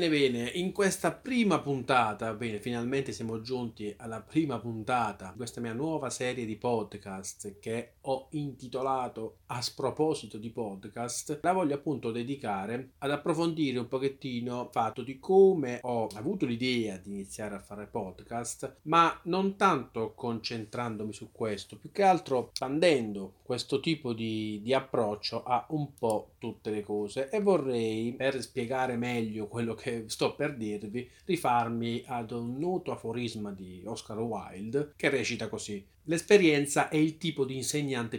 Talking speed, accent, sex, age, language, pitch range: 150 wpm, native, male, 40-59, Italian, 105-135 Hz